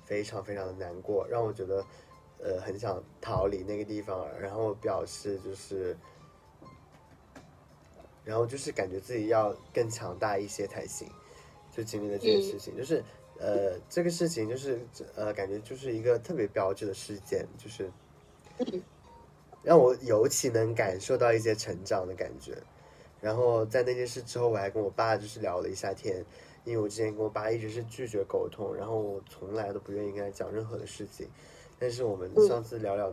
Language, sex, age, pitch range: Chinese, male, 20-39, 100-130 Hz